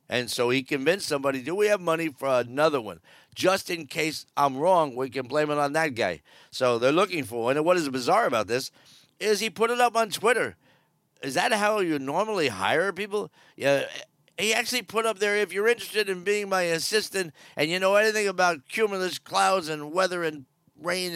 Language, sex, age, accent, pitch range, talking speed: English, male, 50-69, American, 145-200 Hz, 205 wpm